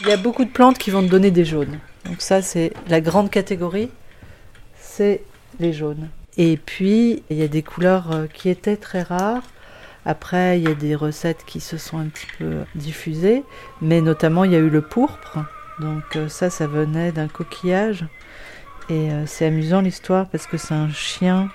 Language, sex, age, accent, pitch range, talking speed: French, female, 40-59, French, 155-190 Hz, 190 wpm